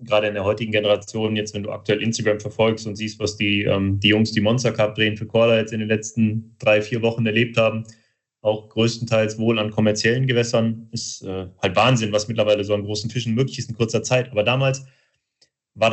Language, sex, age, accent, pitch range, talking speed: German, male, 30-49, German, 105-120 Hz, 215 wpm